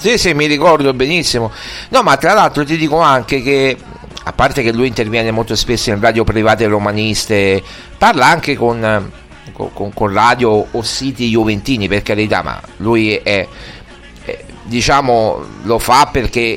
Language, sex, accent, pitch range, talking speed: Italian, male, native, 105-120 Hz, 155 wpm